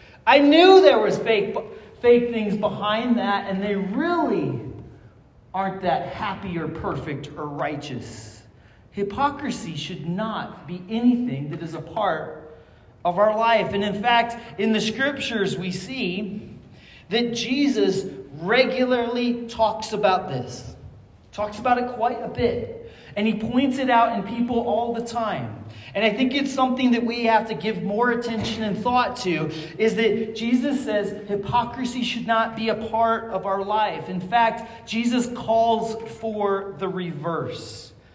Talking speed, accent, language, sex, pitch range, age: 150 wpm, American, English, male, 180-235 Hz, 40-59